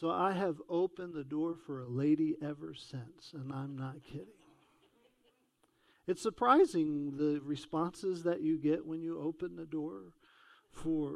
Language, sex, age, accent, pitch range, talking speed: English, male, 50-69, American, 145-210 Hz, 150 wpm